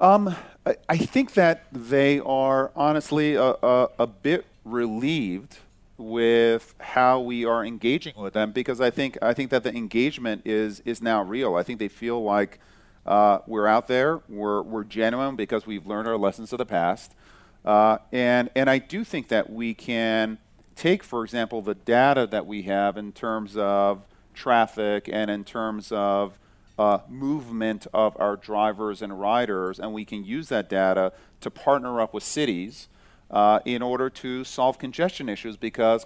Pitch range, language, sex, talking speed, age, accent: 105-125 Hz, English, male, 170 wpm, 40-59, American